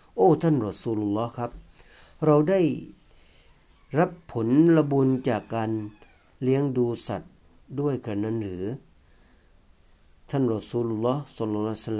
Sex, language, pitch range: male, Thai, 90-125 Hz